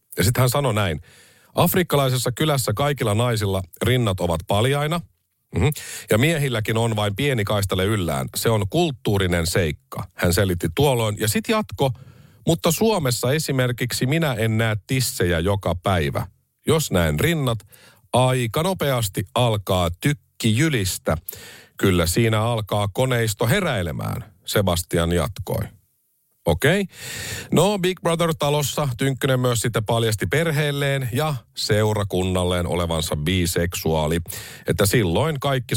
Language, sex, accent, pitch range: Finnish, male, native, 95-135 Hz